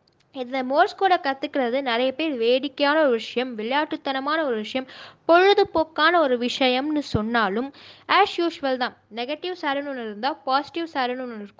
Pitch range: 225-300 Hz